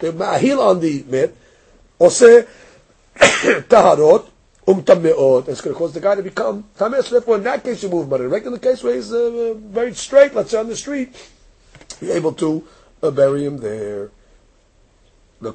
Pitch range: 130-215 Hz